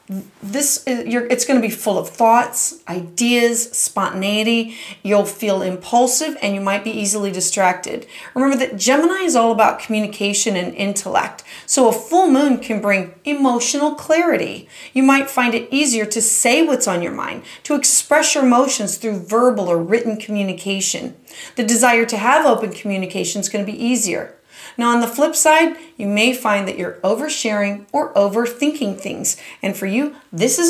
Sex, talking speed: female, 170 wpm